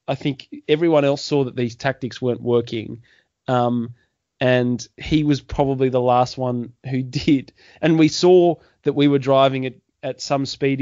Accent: Australian